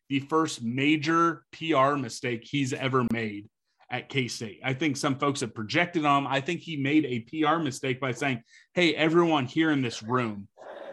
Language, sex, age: English, male, 30-49